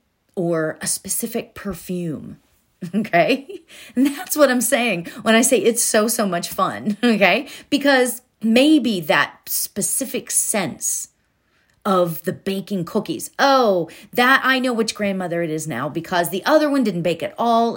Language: English